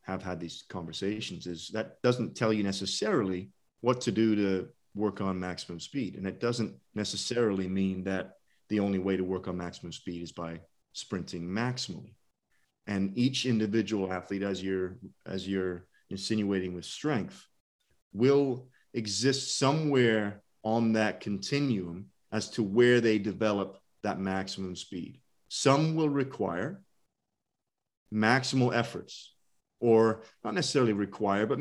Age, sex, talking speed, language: 30-49, male, 135 wpm, English